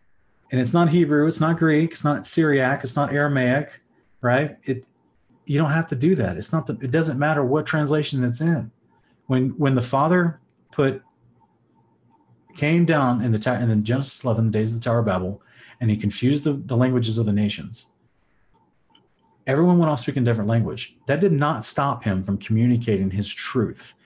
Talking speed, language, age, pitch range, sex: 190 wpm, English, 30-49, 105-145 Hz, male